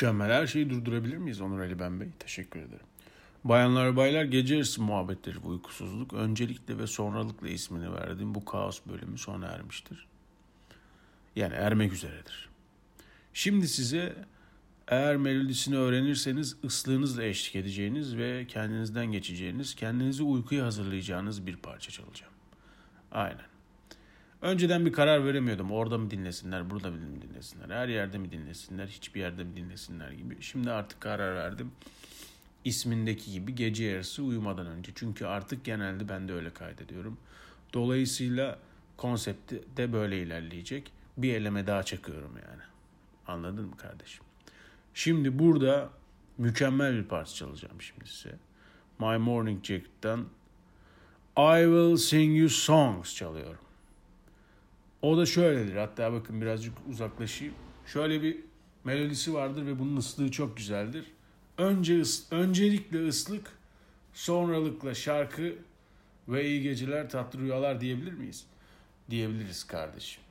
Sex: male